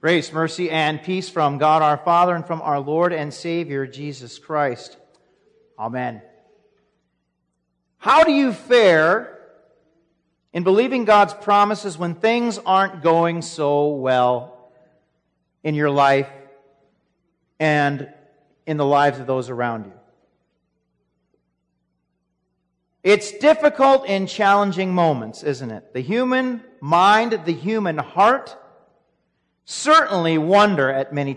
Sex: male